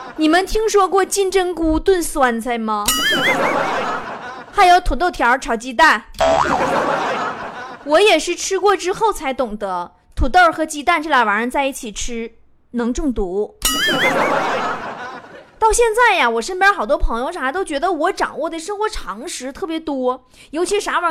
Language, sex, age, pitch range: Chinese, female, 20-39, 250-370 Hz